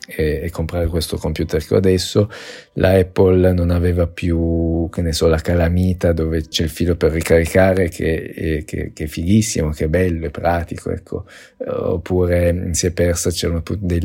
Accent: native